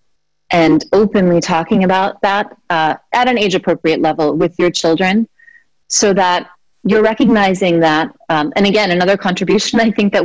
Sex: female